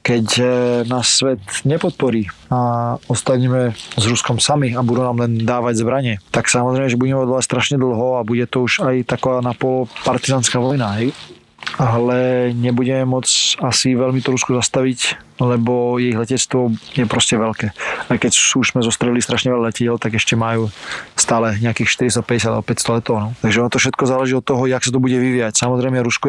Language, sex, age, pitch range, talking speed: Slovak, male, 20-39, 115-125 Hz, 175 wpm